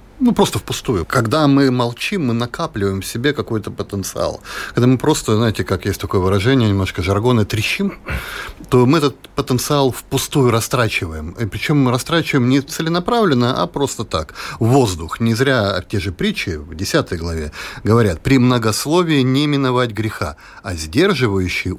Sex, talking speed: male, 150 wpm